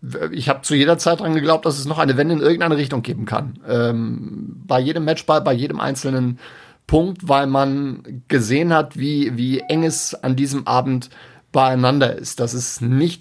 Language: German